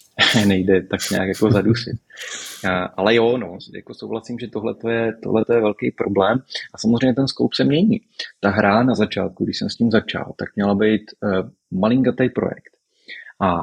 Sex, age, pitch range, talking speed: male, 30-49, 100-125 Hz, 170 wpm